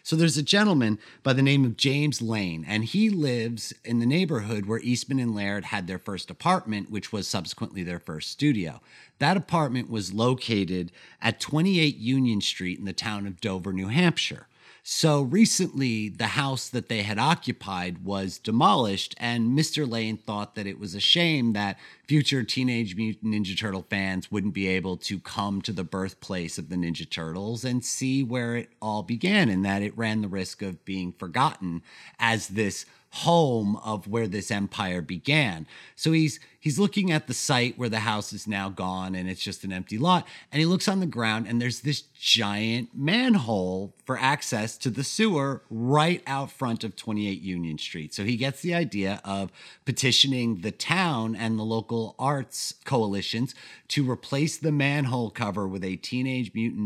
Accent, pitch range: American, 100-135 Hz